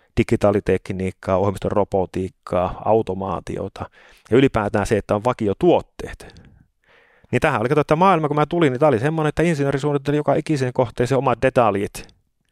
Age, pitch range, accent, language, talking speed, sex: 30-49, 110-145 Hz, native, Finnish, 140 wpm, male